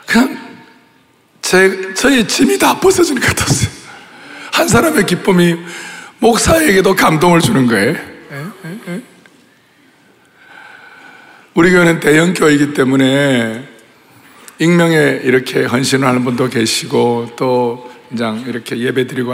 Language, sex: Korean, male